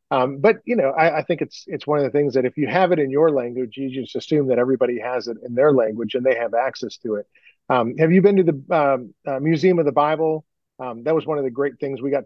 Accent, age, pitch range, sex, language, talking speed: American, 40-59, 130-155 Hz, male, English, 290 wpm